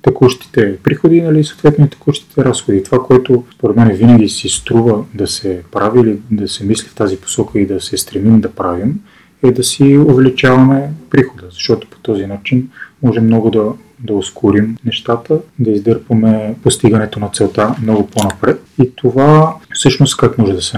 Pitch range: 105-135 Hz